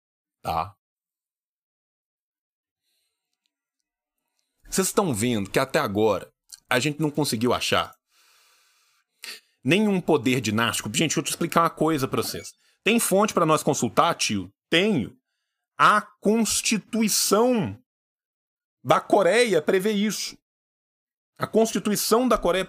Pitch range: 145-220 Hz